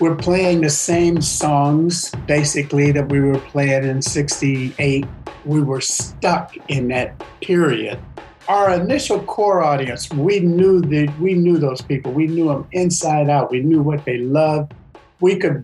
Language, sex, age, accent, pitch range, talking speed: English, male, 50-69, American, 135-165 Hz, 155 wpm